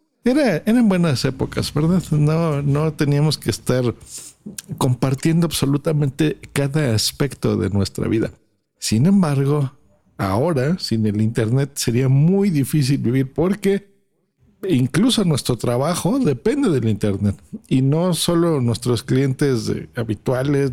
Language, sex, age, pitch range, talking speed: Spanish, male, 50-69, 125-170 Hz, 115 wpm